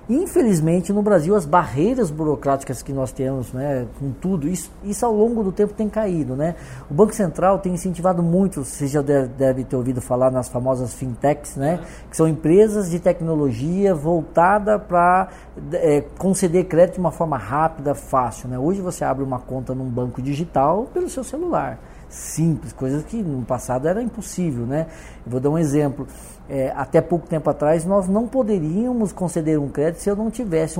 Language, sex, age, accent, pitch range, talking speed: Portuguese, male, 20-39, Brazilian, 135-200 Hz, 180 wpm